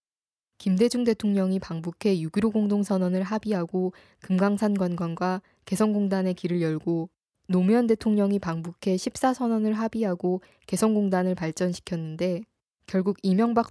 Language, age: Korean, 20-39